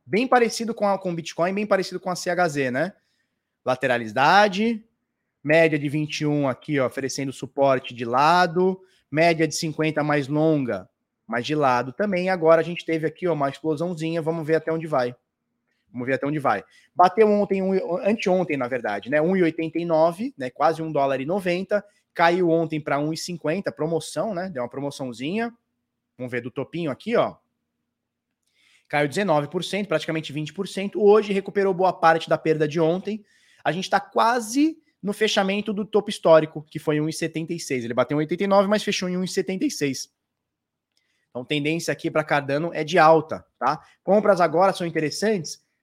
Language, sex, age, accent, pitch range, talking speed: Portuguese, male, 20-39, Brazilian, 145-190 Hz, 155 wpm